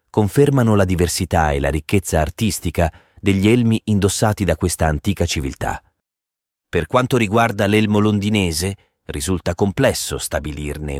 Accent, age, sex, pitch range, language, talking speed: native, 30-49, male, 80-105 Hz, Italian, 120 wpm